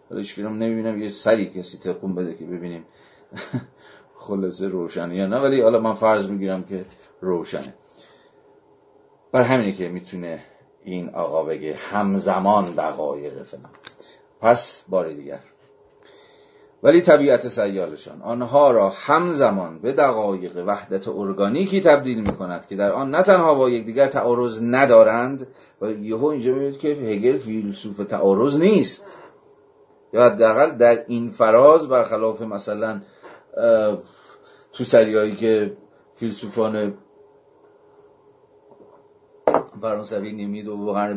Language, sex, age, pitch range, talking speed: Persian, male, 40-59, 95-140 Hz, 115 wpm